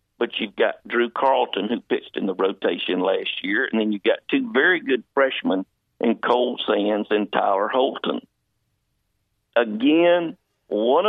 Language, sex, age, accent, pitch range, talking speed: English, male, 50-69, American, 105-135 Hz, 150 wpm